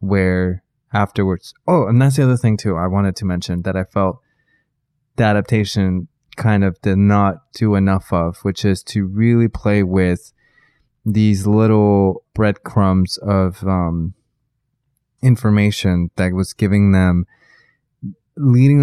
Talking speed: 135 wpm